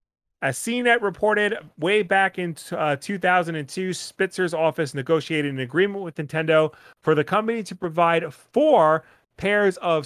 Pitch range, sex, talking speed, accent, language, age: 150-200 Hz, male, 135 wpm, American, English, 30-49